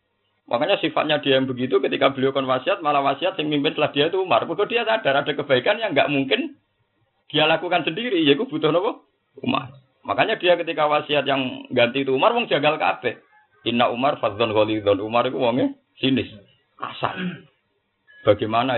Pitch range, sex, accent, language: 115-155 Hz, male, native, Indonesian